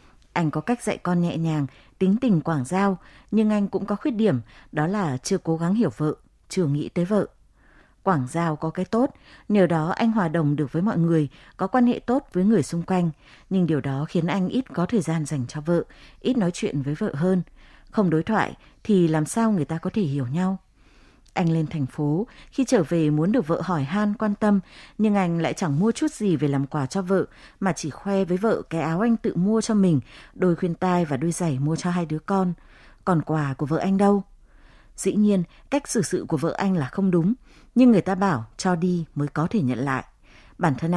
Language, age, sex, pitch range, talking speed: Vietnamese, 20-39, female, 160-205 Hz, 235 wpm